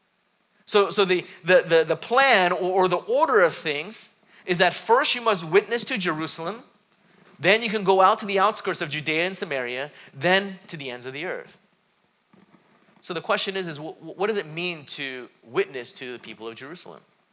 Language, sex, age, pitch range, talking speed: English, male, 30-49, 155-205 Hz, 195 wpm